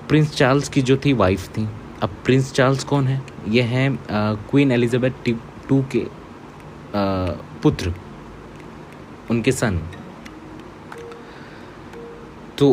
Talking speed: 110 wpm